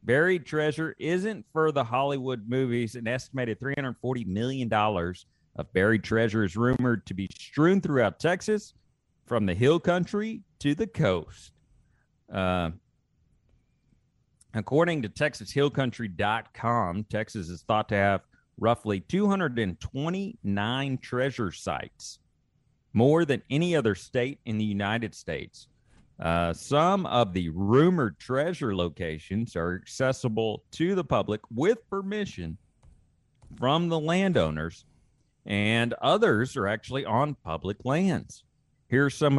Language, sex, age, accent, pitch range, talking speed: English, male, 40-59, American, 100-145 Hz, 115 wpm